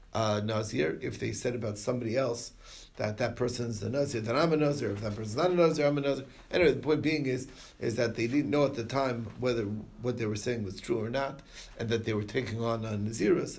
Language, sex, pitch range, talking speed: English, male, 105-130 Hz, 245 wpm